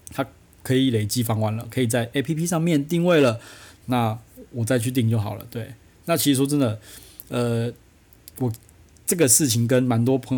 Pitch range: 110-140 Hz